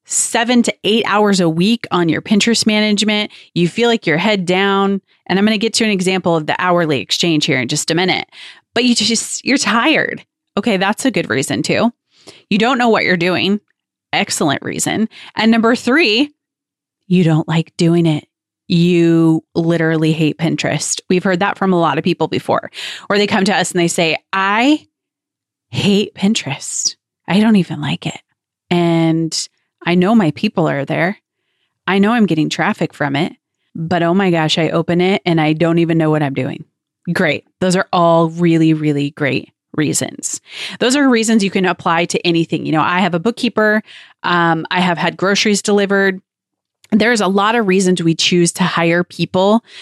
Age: 30-49